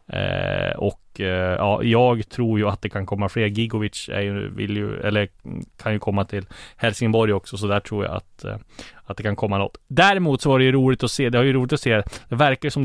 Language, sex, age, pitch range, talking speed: Swedish, male, 20-39, 105-120 Hz, 245 wpm